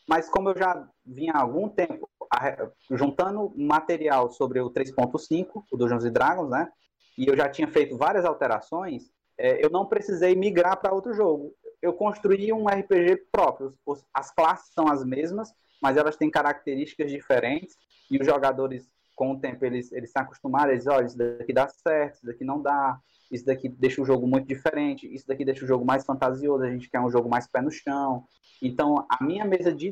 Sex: male